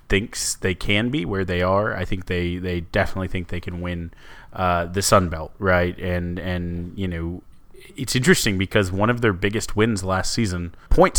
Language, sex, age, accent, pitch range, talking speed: English, male, 30-49, American, 90-105 Hz, 195 wpm